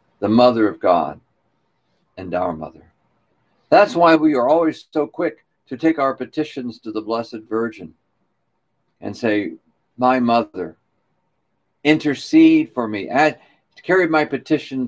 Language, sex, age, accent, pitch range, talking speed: English, male, 60-79, American, 120-150 Hz, 135 wpm